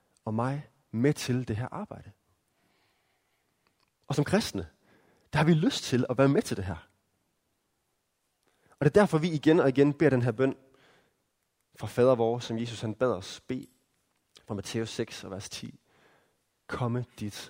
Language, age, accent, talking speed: Danish, 30-49, native, 165 wpm